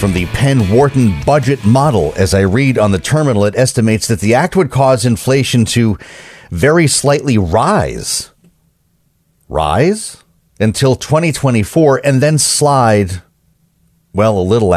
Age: 40-59